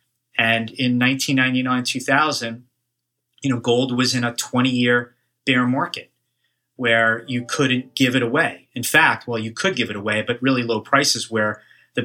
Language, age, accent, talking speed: English, 30-49, American, 170 wpm